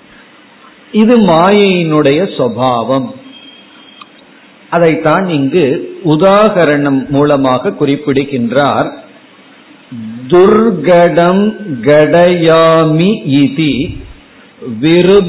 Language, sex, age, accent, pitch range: Tamil, male, 50-69, native, 145-190 Hz